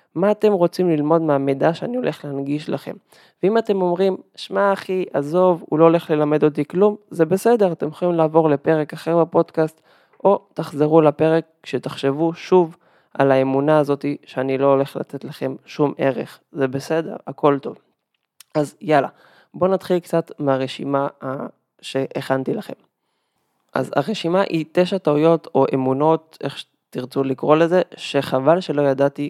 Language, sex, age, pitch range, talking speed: Hebrew, male, 20-39, 140-170 Hz, 145 wpm